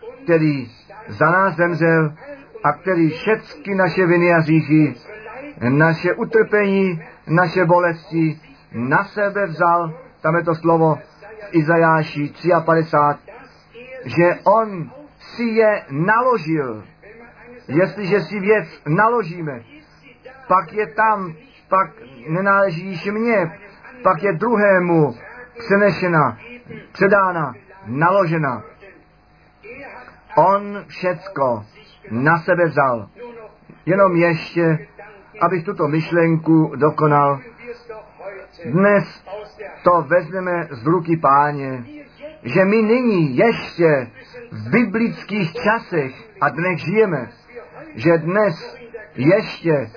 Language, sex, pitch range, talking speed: Czech, male, 155-205 Hz, 90 wpm